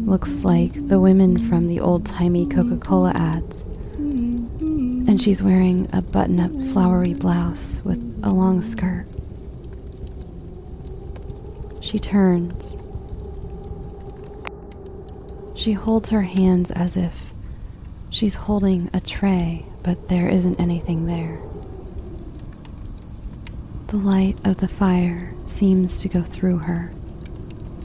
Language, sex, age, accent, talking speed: English, female, 20-39, American, 100 wpm